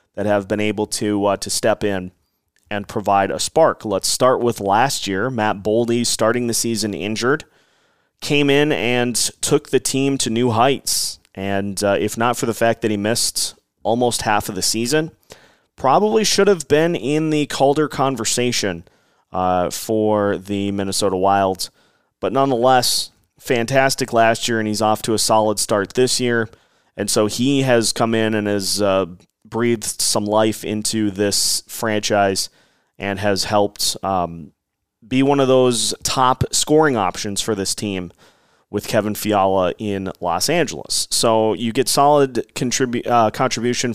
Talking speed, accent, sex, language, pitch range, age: 155 wpm, American, male, English, 100-125 Hz, 30-49